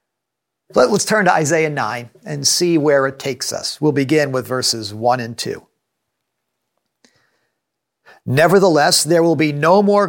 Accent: American